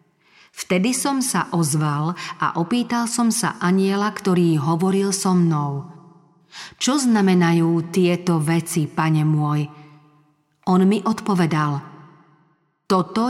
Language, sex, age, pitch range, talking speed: Slovak, female, 40-59, 160-195 Hz, 105 wpm